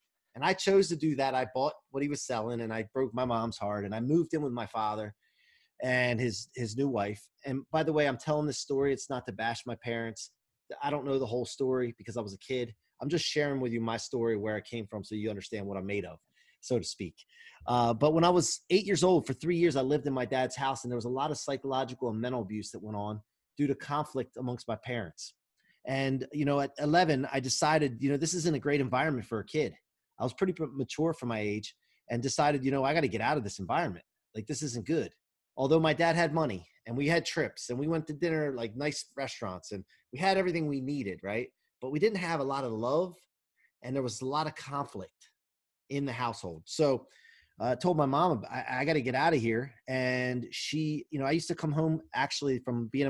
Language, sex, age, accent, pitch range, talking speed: English, male, 30-49, American, 115-150 Hz, 245 wpm